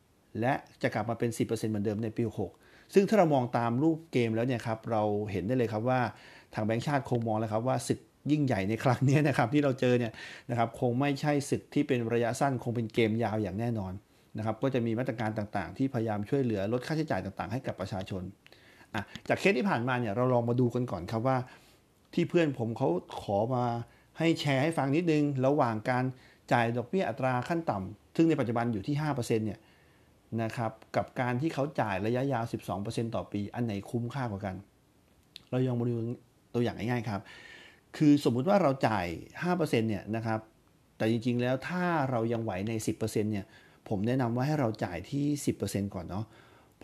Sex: male